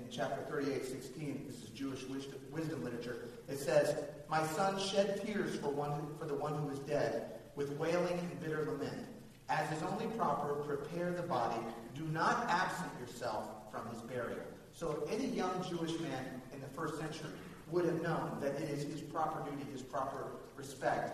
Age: 40-59